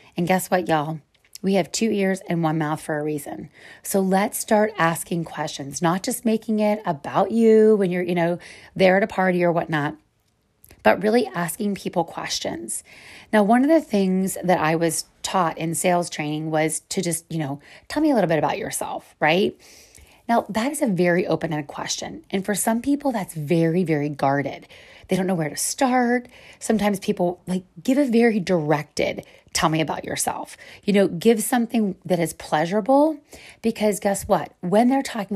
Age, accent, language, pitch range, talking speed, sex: 30-49, American, English, 170-215 Hz, 185 wpm, female